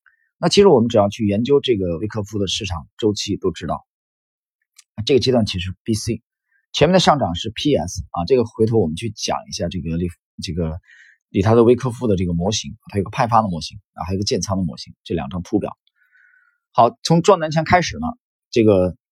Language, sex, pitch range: Chinese, male, 95-145 Hz